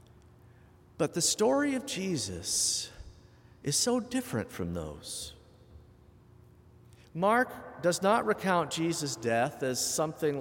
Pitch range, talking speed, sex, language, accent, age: 115-165 Hz, 105 wpm, male, English, American, 50-69